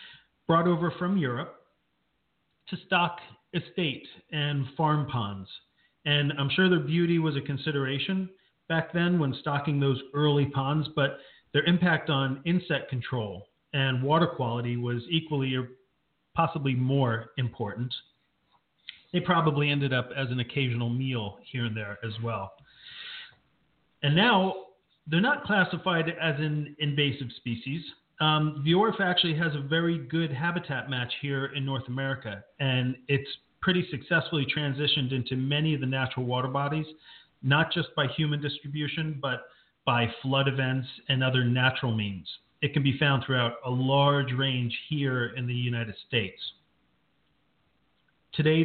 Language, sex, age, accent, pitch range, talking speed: English, male, 40-59, American, 130-155 Hz, 140 wpm